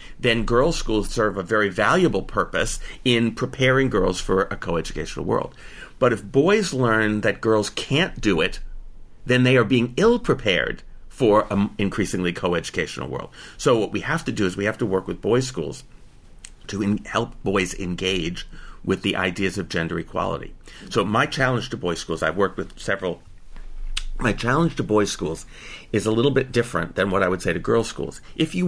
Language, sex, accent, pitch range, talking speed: English, male, American, 90-125 Hz, 185 wpm